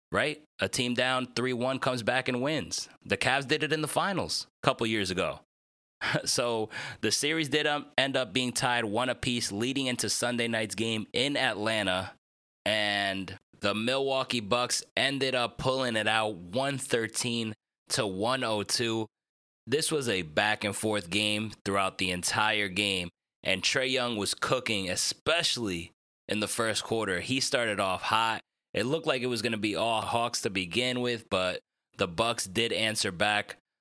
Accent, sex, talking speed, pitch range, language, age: American, male, 165 wpm, 100-125 Hz, English, 20-39